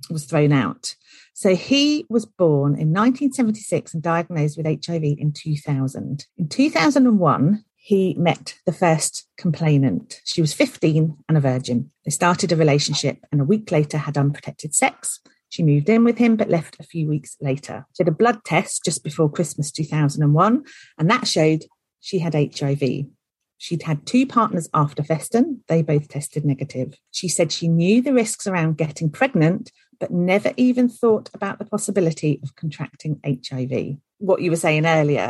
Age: 40-59